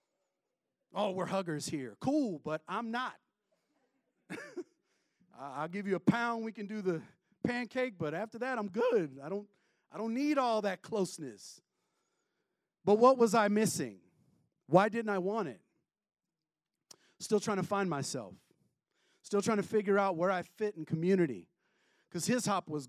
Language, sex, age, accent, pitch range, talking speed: English, male, 40-59, American, 170-220 Hz, 155 wpm